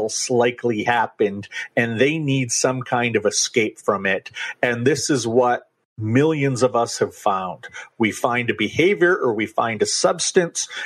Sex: male